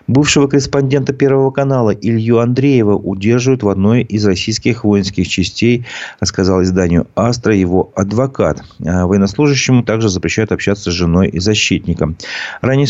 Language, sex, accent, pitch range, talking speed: Russian, male, native, 90-120 Hz, 125 wpm